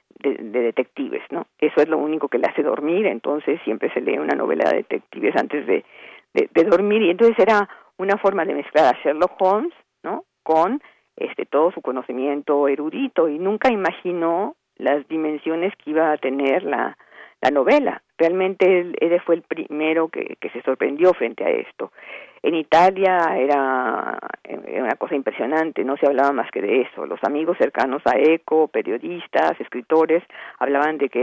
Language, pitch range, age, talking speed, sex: Spanish, 145-190 Hz, 50-69, 175 wpm, female